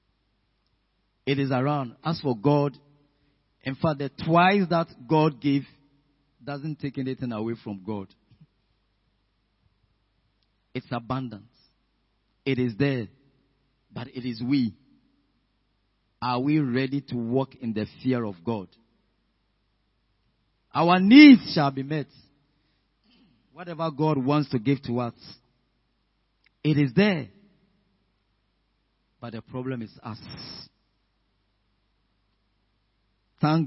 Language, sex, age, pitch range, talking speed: English, male, 40-59, 105-145 Hz, 105 wpm